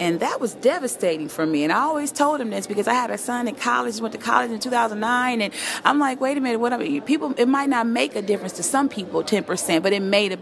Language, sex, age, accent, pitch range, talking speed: English, female, 30-49, American, 170-250 Hz, 275 wpm